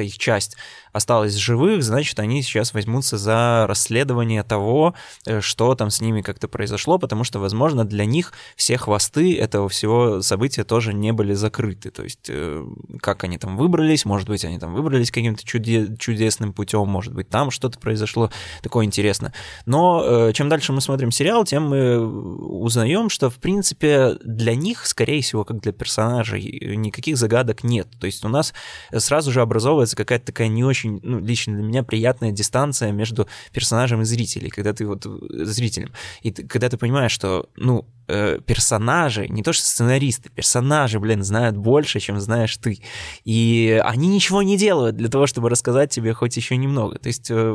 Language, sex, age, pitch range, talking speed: Russian, male, 20-39, 105-125 Hz, 165 wpm